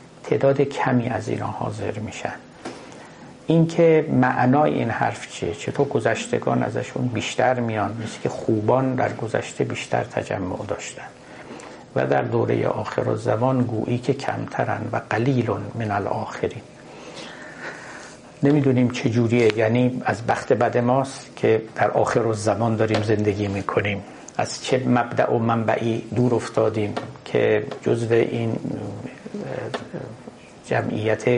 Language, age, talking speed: Persian, 60-79, 115 wpm